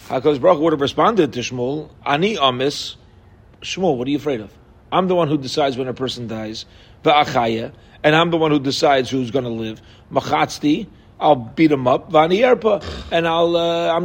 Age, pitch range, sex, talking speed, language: 40-59, 125-170 Hz, male, 185 wpm, English